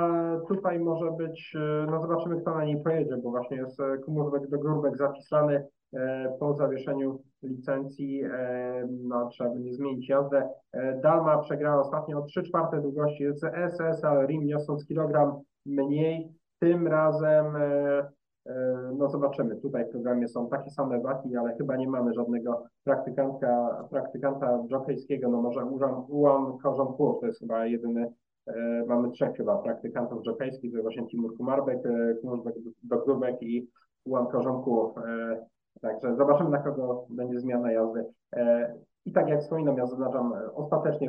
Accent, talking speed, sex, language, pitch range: native, 135 wpm, male, Polish, 125-150 Hz